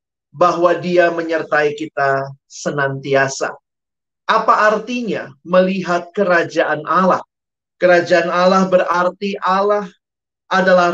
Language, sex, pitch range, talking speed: Indonesian, male, 170-210 Hz, 80 wpm